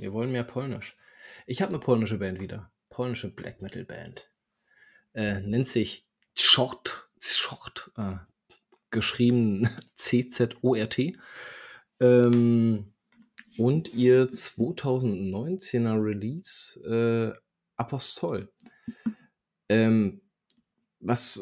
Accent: German